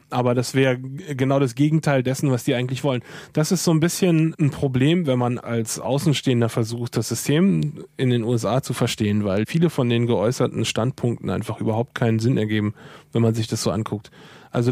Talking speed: 195 wpm